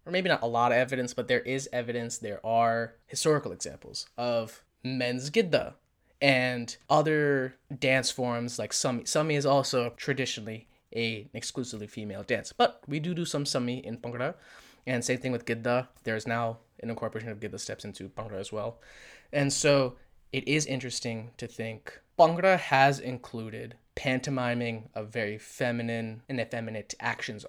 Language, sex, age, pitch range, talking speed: English, male, 20-39, 115-140 Hz, 160 wpm